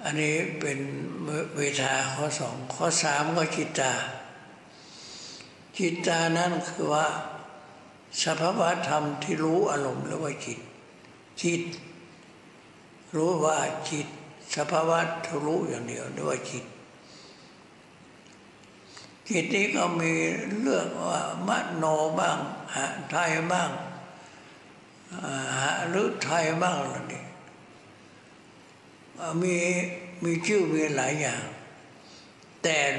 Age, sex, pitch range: 60-79, male, 150-175 Hz